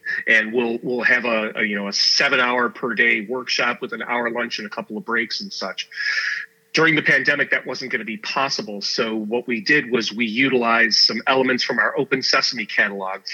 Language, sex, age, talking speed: English, male, 40-59, 215 wpm